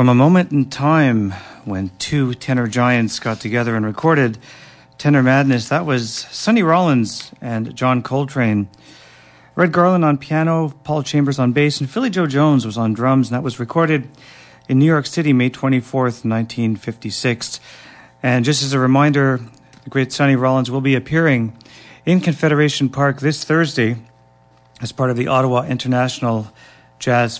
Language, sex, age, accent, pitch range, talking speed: English, male, 40-59, American, 120-150 Hz, 160 wpm